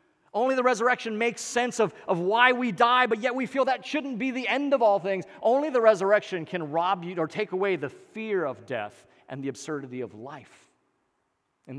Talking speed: 210 wpm